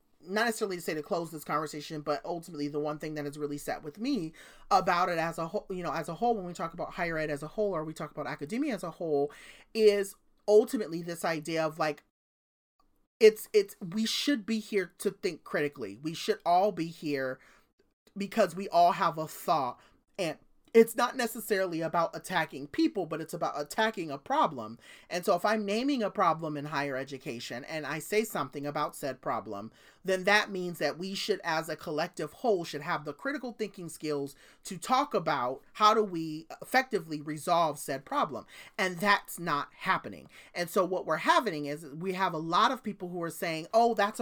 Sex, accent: male, American